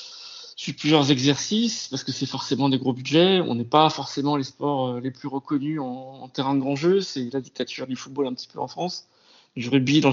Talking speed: 220 wpm